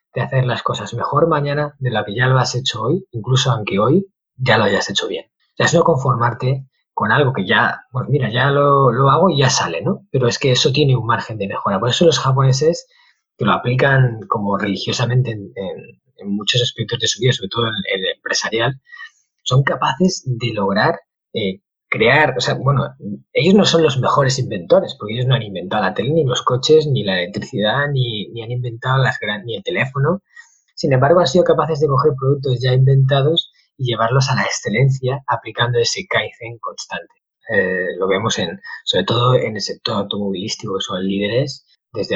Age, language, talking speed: 20-39, Spanish, 205 wpm